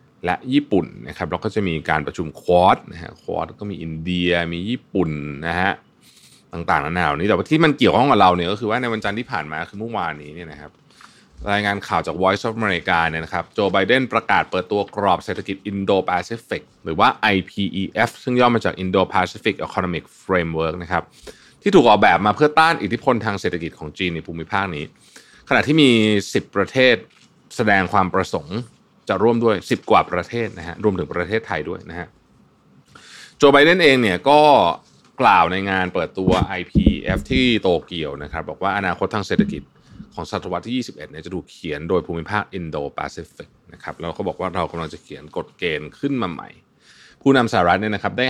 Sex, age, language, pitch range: male, 20-39, Thai, 85-110 Hz